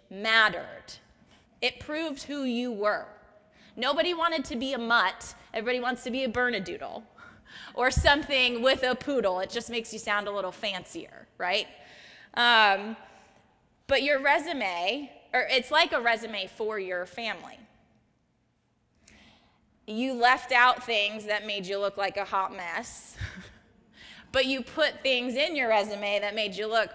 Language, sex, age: English, female, 20-39